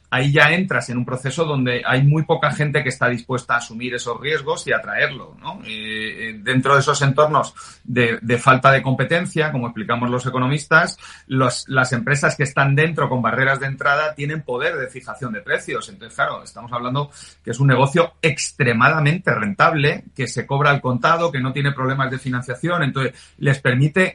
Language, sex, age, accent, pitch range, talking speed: Spanish, male, 40-59, Spanish, 125-155 Hz, 185 wpm